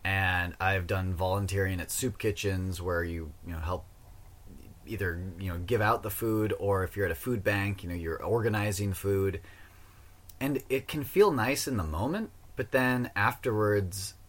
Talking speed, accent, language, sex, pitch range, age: 175 wpm, American, English, male, 90-115 Hz, 30-49